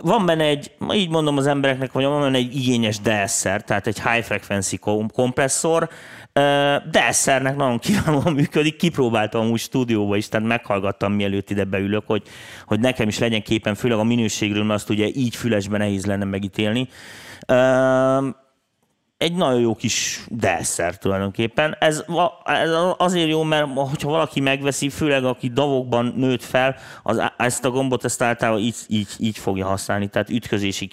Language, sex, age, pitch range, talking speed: Hungarian, male, 30-49, 105-135 Hz, 155 wpm